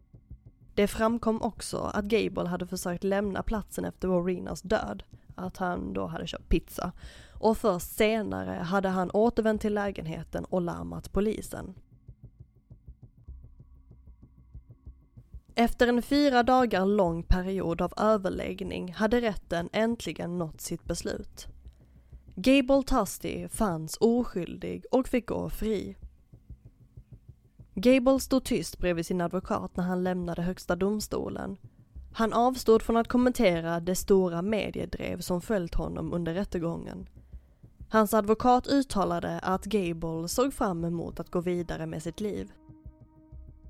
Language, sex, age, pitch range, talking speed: Swedish, female, 10-29, 140-220 Hz, 120 wpm